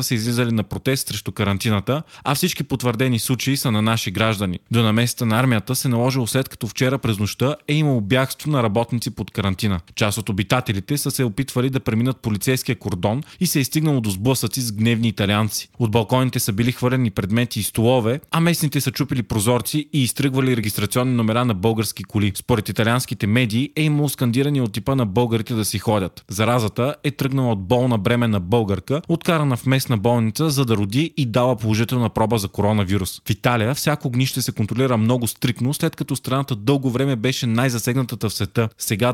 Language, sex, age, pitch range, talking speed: Bulgarian, male, 30-49, 110-135 Hz, 190 wpm